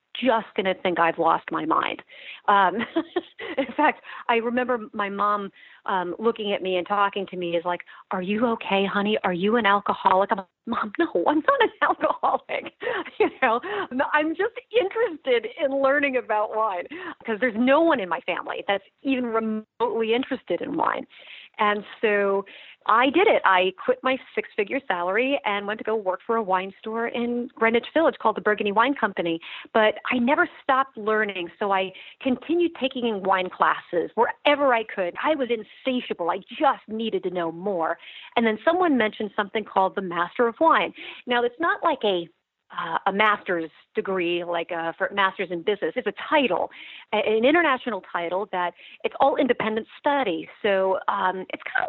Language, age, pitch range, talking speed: English, 40-59, 190-265 Hz, 180 wpm